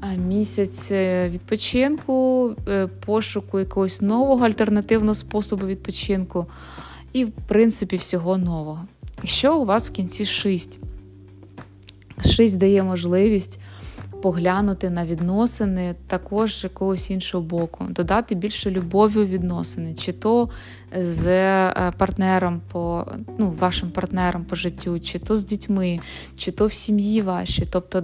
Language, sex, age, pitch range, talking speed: Ukrainian, female, 20-39, 175-210 Hz, 115 wpm